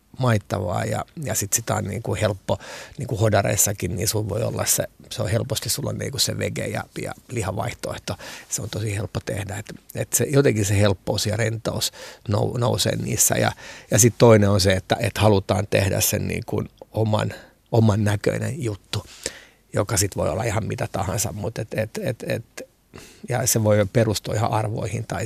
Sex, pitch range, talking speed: male, 105-115 Hz, 175 wpm